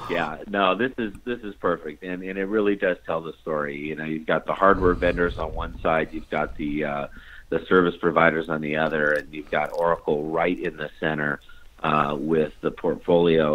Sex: male